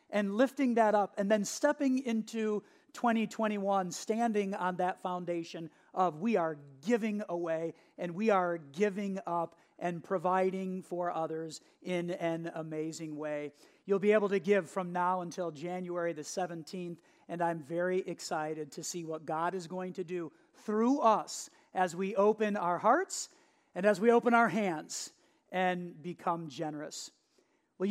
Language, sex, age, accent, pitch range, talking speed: English, male, 40-59, American, 175-215 Hz, 155 wpm